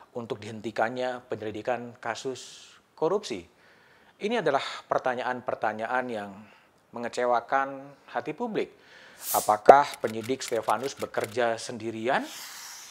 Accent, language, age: native, Indonesian, 40-59